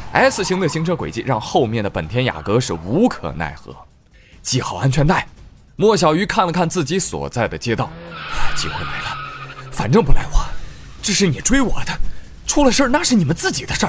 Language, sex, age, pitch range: Chinese, male, 20-39, 105-170 Hz